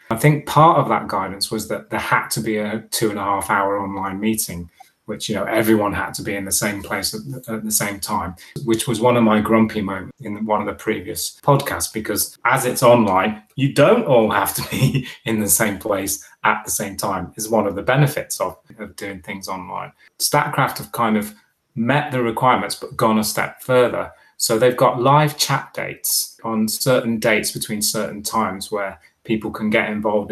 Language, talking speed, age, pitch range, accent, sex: English, 210 wpm, 30-49, 105-115 Hz, British, male